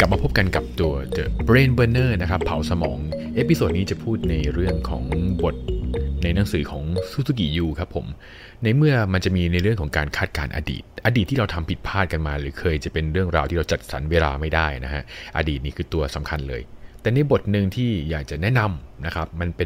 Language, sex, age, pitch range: Thai, male, 20-39, 80-115 Hz